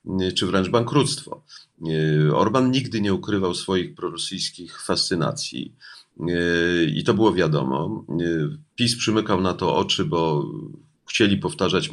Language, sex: Polish, male